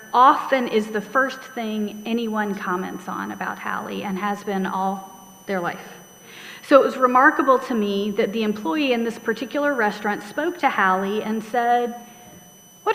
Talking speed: 160 wpm